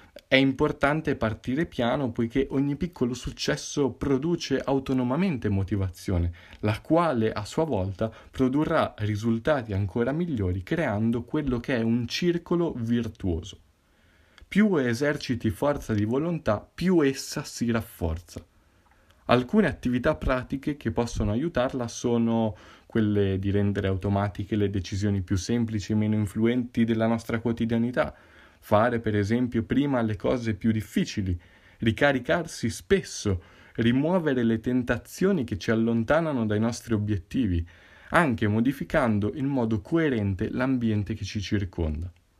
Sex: male